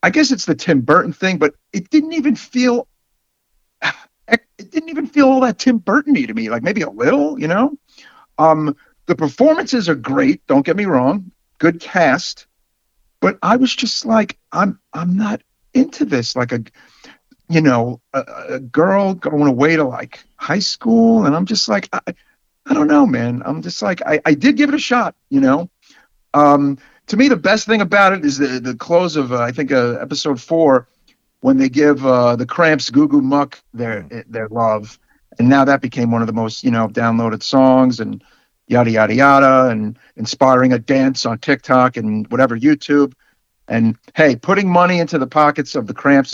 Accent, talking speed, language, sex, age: American, 195 wpm, English, male, 50-69